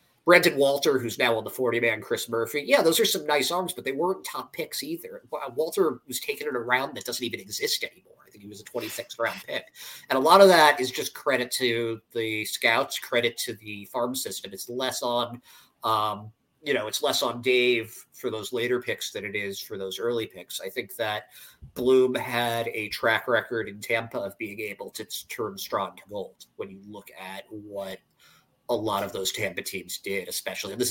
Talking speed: 215 wpm